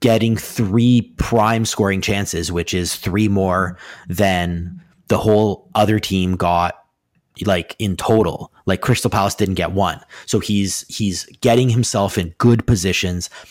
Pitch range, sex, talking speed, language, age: 95-115 Hz, male, 140 wpm, English, 30-49